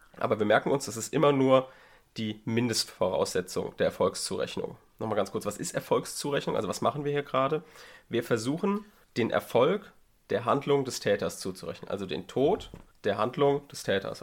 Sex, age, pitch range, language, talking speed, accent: male, 30-49, 105-145 Hz, German, 170 wpm, German